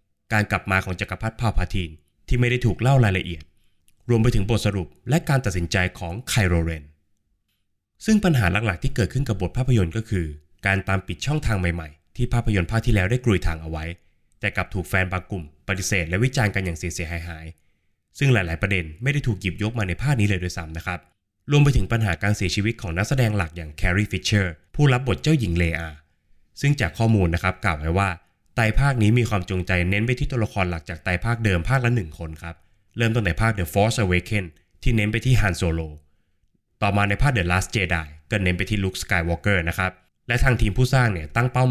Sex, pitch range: male, 90-115 Hz